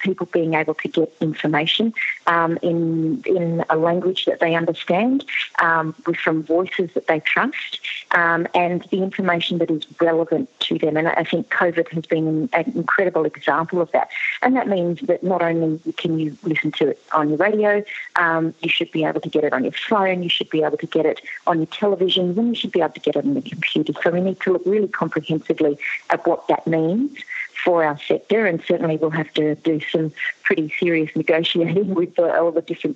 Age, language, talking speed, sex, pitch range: 40-59, English, 210 wpm, female, 160-185 Hz